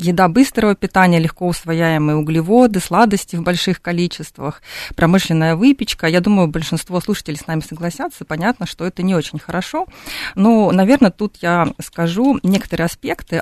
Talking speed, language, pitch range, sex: 145 wpm, Russian, 160-195 Hz, female